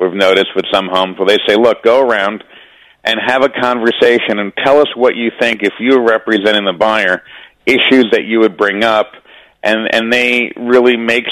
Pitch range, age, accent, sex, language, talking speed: 105-125 Hz, 40-59, American, male, English, 200 wpm